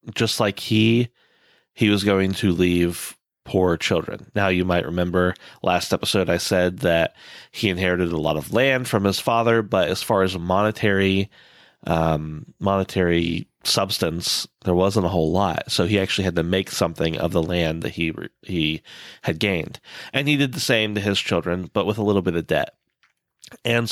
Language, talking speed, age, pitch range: English, 185 wpm, 30-49, 90-110 Hz